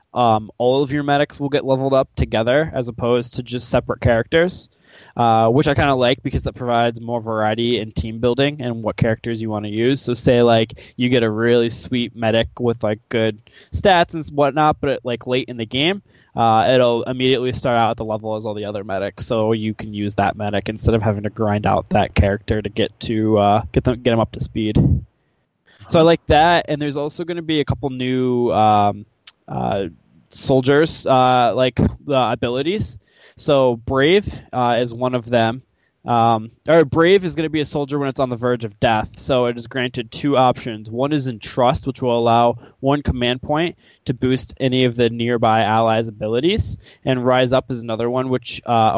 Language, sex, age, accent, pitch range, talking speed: English, male, 20-39, American, 115-130 Hz, 210 wpm